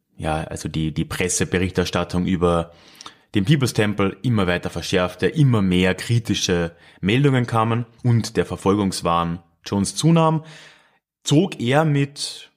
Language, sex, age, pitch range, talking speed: German, male, 30-49, 90-150 Hz, 120 wpm